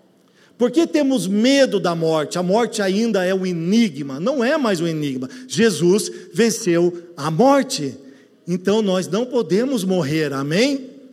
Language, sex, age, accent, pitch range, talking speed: Portuguese, male, 50-69, Brazilian, 150-220 Hz, 140 wpm